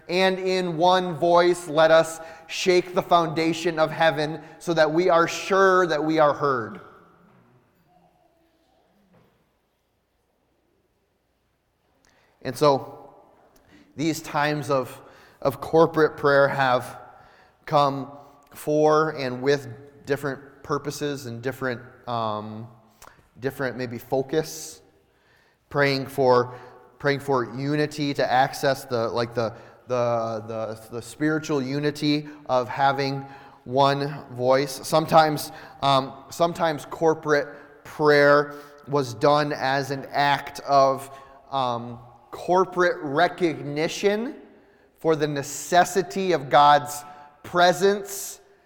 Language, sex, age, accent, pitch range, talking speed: English, male, 30-49, American, 135-165 Hz, 100 wpm